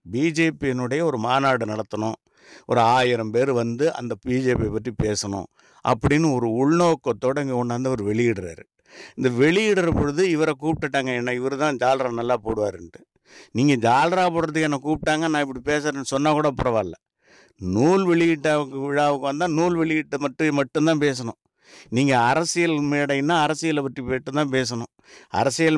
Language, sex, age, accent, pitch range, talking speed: English, male, 50-69, Indian, 120-150 Hz, 120 wpm